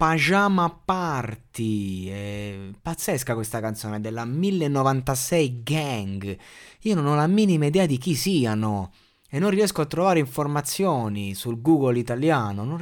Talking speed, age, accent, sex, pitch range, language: 125 wpm, 20-39, native, male, 115-150 Hz, Italian